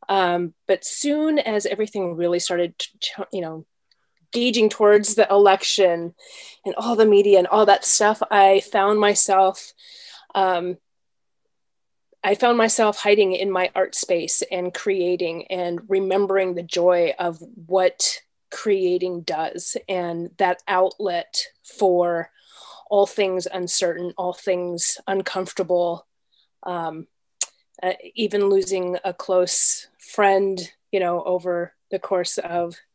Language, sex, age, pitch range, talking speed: English, female, 30-49, 175-205 Hz, 120 wpm